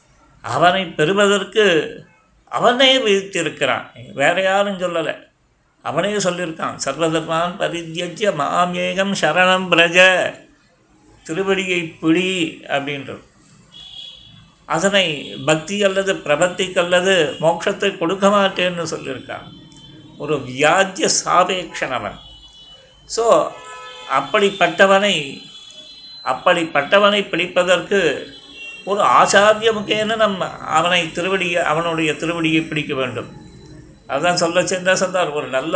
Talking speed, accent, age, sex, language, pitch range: 80 wpm, native, 60-79, male, Tamil, 165-185 Hz